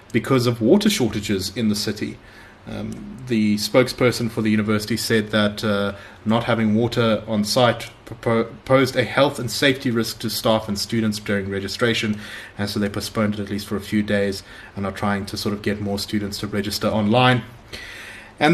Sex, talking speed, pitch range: male, 185 wpm, 100-115 Hz